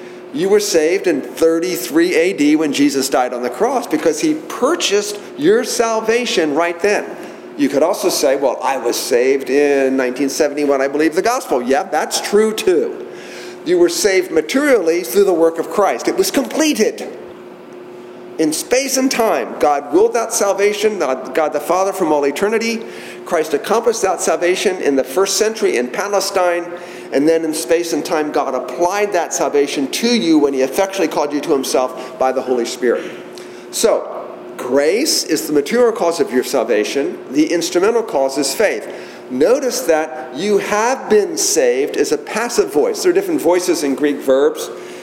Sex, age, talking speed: male, 50-69, 170 wpm